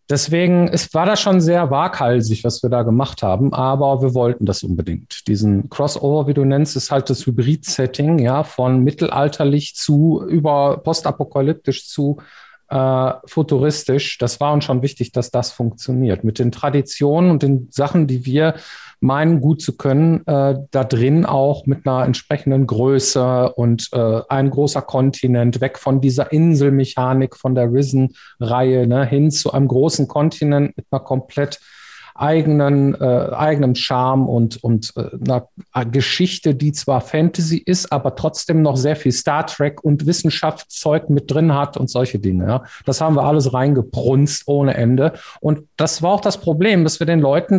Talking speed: 165 wpm